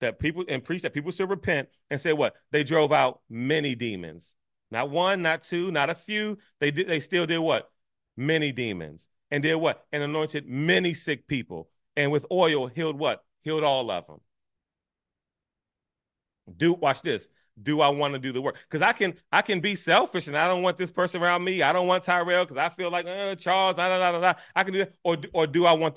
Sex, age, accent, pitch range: male, 30-49, American, 135-180 Hz